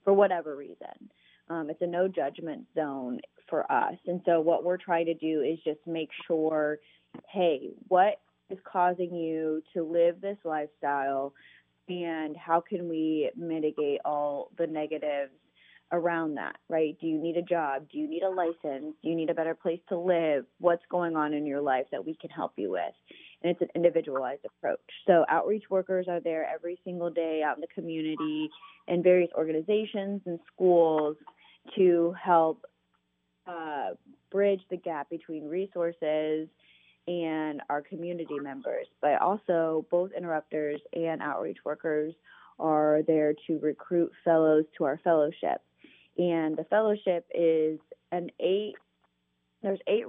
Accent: American